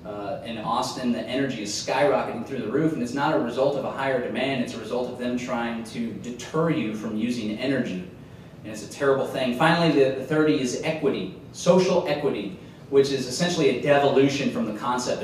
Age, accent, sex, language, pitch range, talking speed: 30-49, American, male, English, 115-140 Hz, 205 wpm